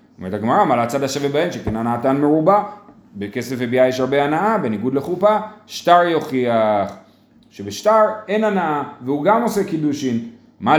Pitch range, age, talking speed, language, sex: 135-205 Hz, 30-49, 145 wpm, Hebrew, male